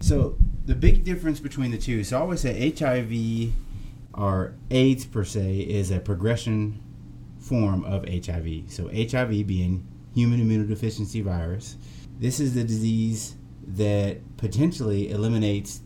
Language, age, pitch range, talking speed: English, 30-49, 95-115 Hz, 130 wpm